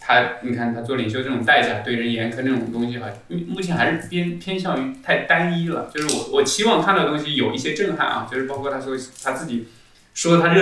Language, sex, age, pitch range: Chinese, male, 20-39, 125-165 Hz